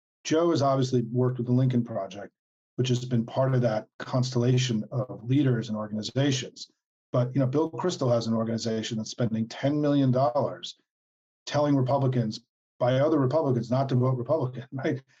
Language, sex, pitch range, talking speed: English, male, 125-150 Hz, 165 wpm